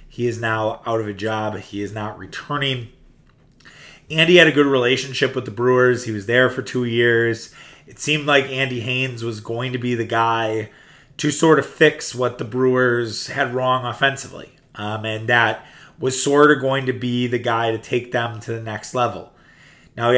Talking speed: 195 wpm